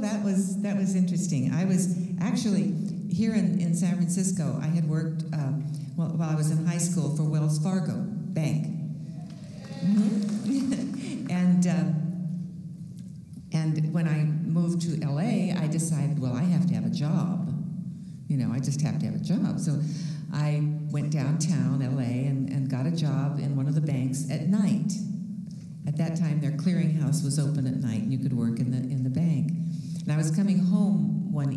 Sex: female